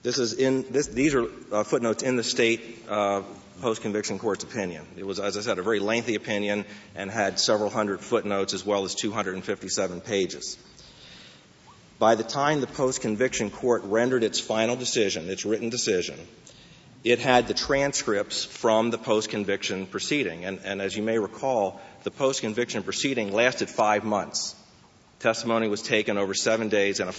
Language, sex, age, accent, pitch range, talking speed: English, male, 40-59, American, 105-120 Hz, 155 wpm